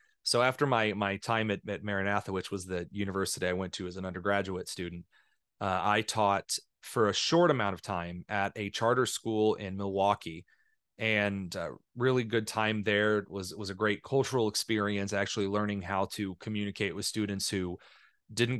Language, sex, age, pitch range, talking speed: English, male, 30-49, 100-115 Hz, 185 wpm